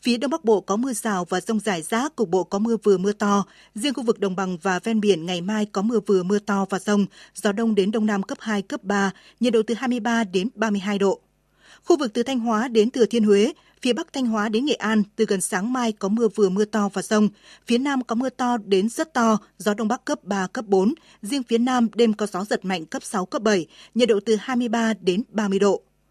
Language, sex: Vietnamese, female